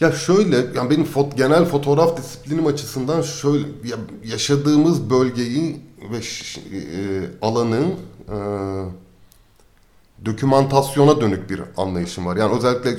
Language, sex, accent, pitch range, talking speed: Turkish, male, native, 100-125 Hz, 115 wpm